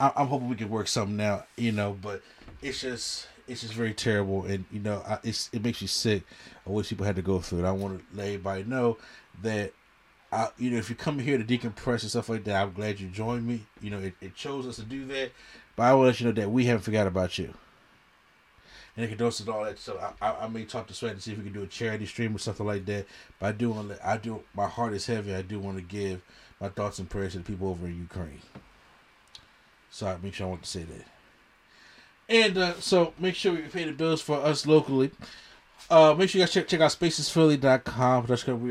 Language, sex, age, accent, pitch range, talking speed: English, male, 30-49, American, 100-130 Hz, 255 wpm